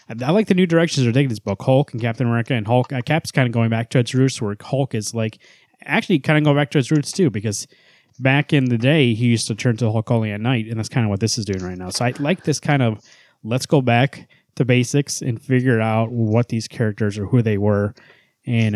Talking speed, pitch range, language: 265 wpm, 115-140 Hz, English